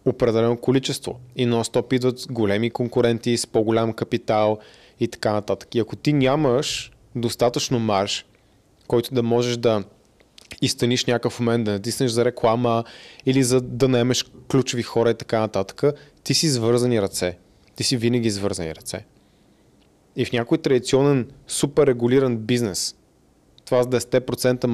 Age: 20-39